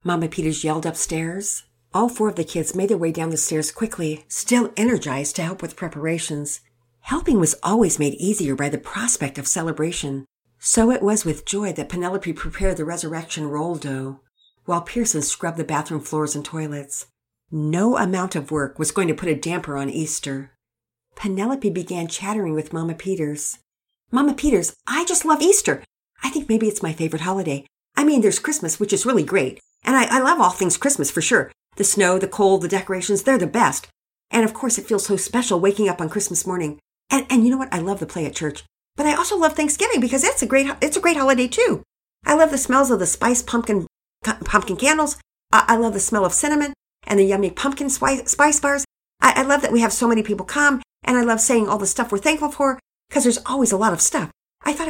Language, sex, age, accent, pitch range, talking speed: English, female, 50-69, American, 160-245 Hz, 215 wpm